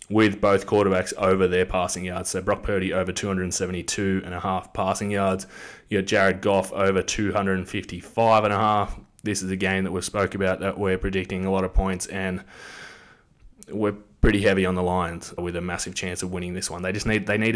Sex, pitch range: male, 90-100 Hz